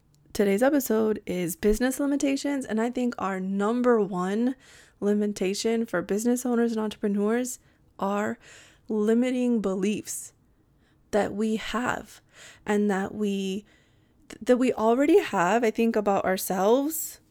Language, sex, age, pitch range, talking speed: English, female, 20-39, 200-250 Hz, 120 wpm